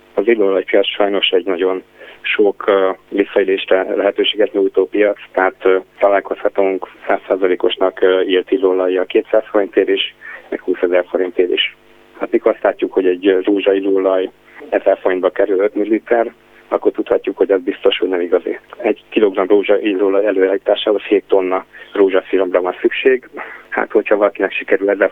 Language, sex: Hungarian, male